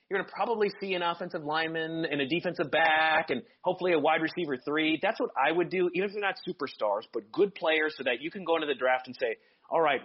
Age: 30-49